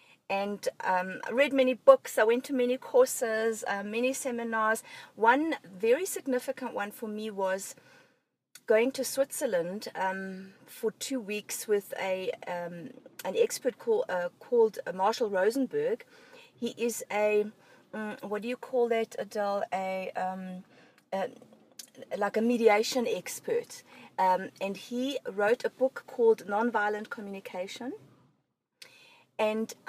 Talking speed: 130 wpm